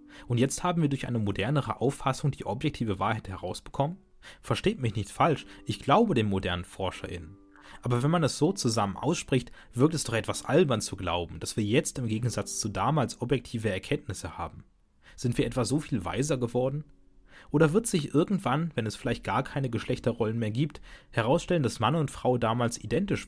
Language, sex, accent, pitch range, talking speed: German, male, German, 110-150 Hz, 185 wpm